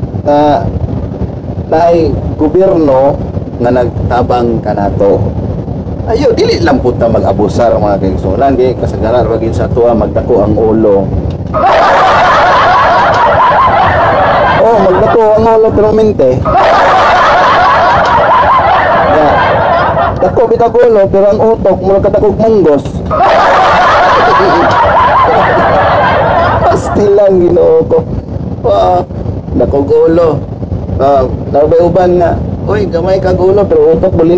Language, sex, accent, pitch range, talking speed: Filipino, male, native, 105-160 Hz, 90 wpm